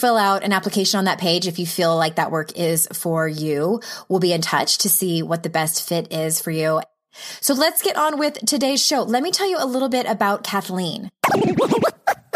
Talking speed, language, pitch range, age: 220 wpm, English, 165-210 Hz, 20-39